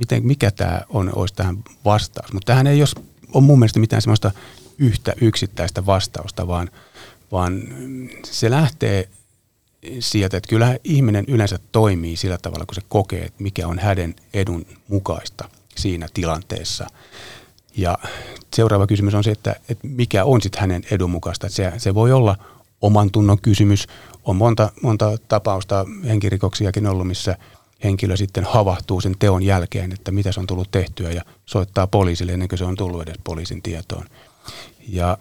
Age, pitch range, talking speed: 30-49, 90-110 Hz, 155 wpm